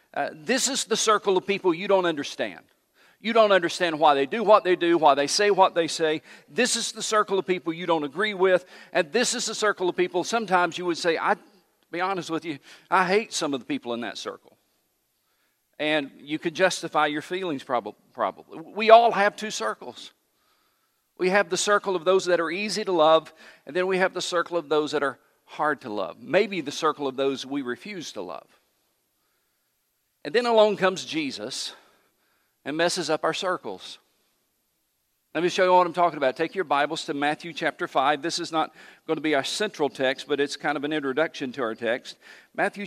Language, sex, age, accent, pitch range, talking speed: English, male, 50-69, American, 155-195 Hz, 210 wpm